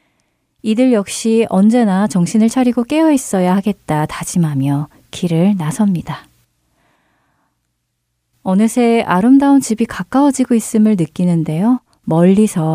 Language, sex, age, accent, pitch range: Korean, female, 40-59, native, 160-225 Hz